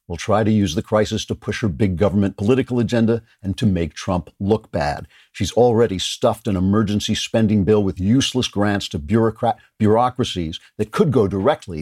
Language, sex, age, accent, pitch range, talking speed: English, male, 50-69, American, 95-125 Hz, 180 wpm